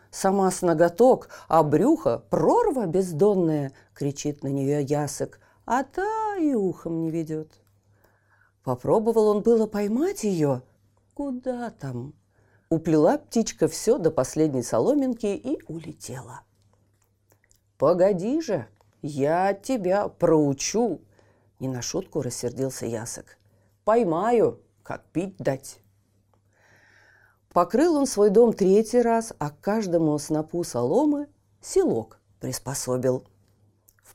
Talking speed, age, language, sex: 105 wpm, 40-59, Russian, female